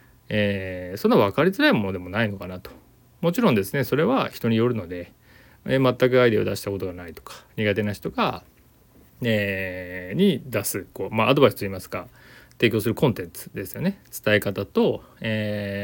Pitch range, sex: 95-130 Hz, male